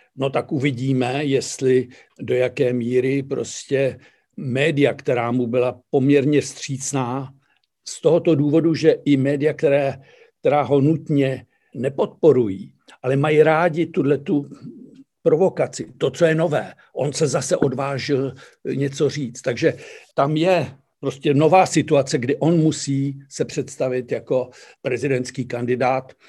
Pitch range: 125-150 Hz